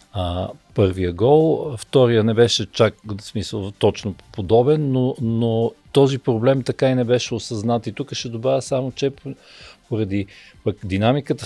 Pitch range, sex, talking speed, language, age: 105-130 Hz, male, 145 wpm, Bulgarian, 40-59